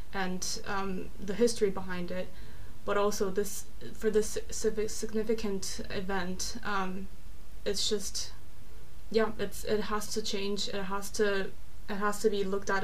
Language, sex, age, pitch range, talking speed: English, female, 20-39, 190-210 Hz, 145 wpm